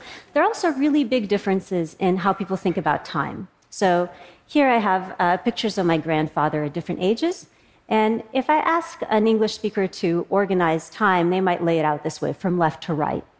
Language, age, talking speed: English, 40-59, 200 wpm